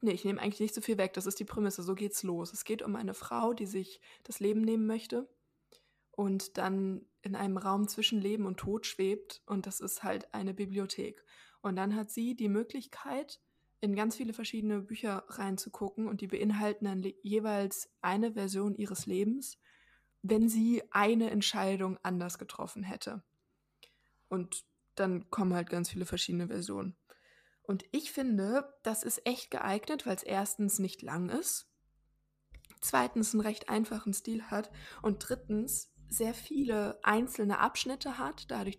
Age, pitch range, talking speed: 20-39, 195-225 Hz, 160 wpm